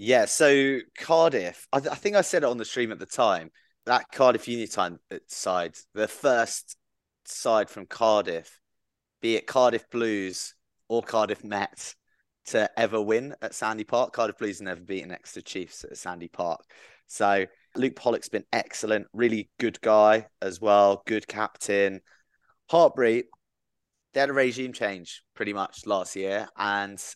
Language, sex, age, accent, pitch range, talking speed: English, male, 20-39, British, 105-125 Hz, 155 wpm